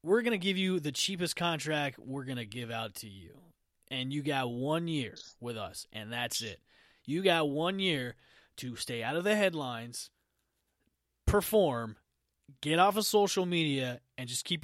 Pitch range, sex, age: 125-190 Hz, male, 30-49